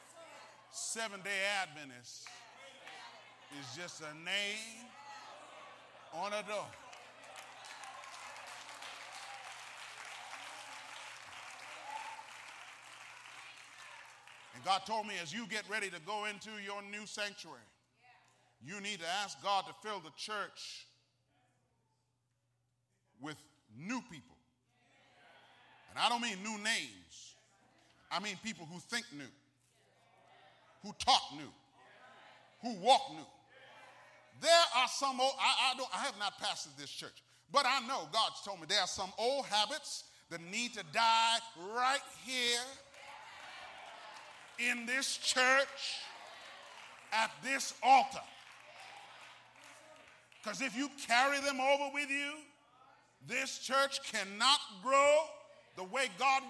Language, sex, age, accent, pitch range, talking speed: English, male, 40-59, American, 185-270 Hz, 110 wpm